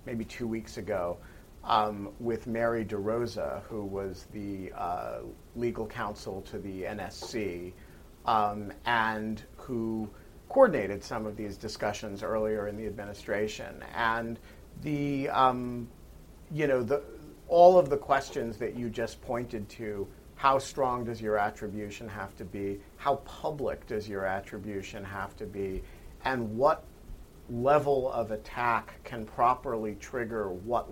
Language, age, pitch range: English, 40-59, 100-120 Hz